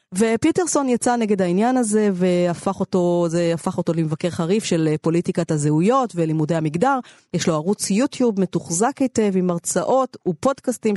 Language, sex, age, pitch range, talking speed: Hebrew, female, 30-49, 175-225 Hz, 140 wpm